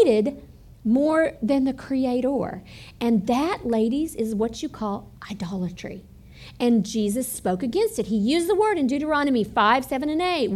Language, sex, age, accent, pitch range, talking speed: English, female, 50-69, American, 225-355 Hz, 155 wpm